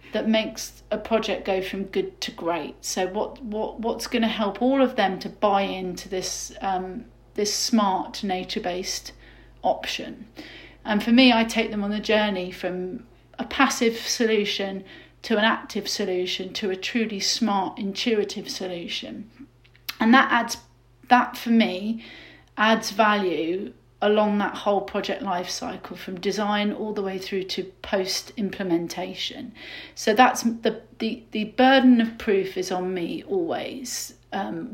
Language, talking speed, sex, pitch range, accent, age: English, 150 wpm, female, 185-225 Hz, British, 40-59